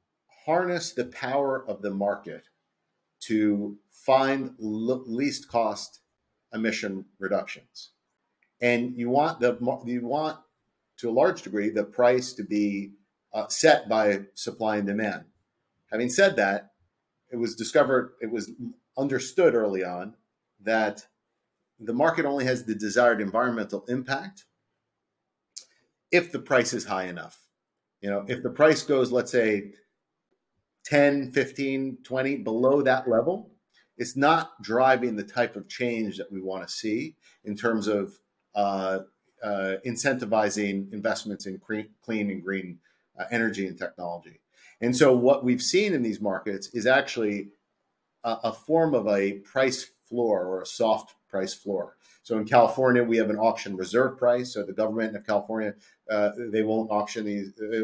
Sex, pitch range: male, 105-130 Hz